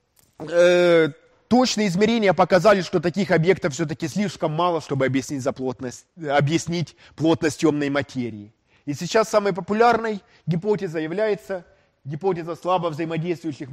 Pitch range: 155-220 Hz